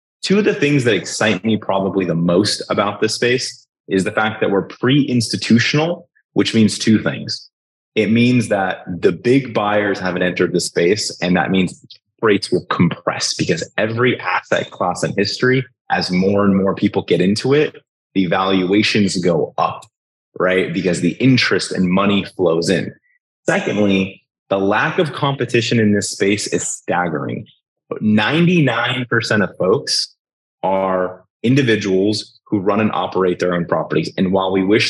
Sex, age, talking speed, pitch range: male, 30-49, 160 wpm, 95-125 Hz